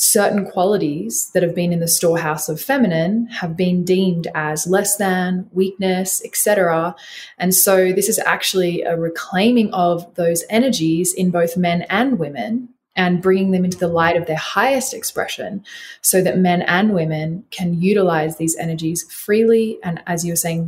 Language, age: English, 20-39